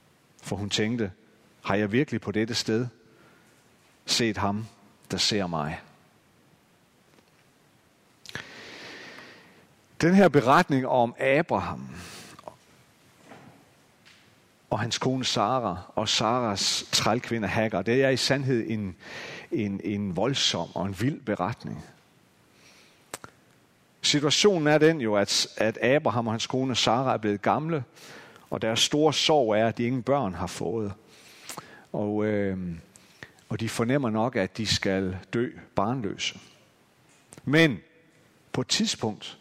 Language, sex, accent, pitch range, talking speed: Danish, male, native, 105-140 Hz, 115 wpm